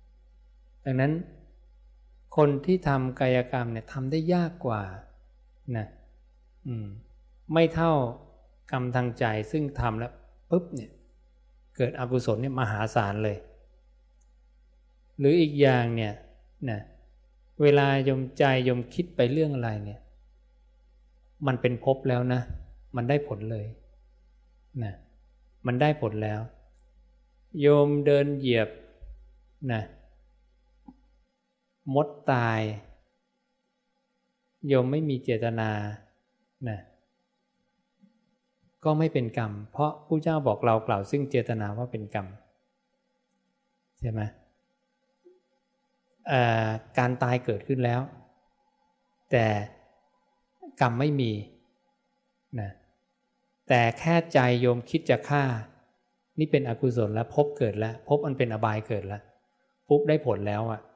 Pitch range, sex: 110-150 Hz, male